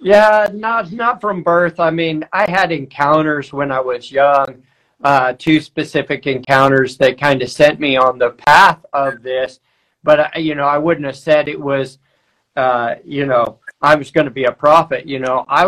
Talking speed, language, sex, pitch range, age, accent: 195 wpm, English, male, 145-175 Hz, 50-69, American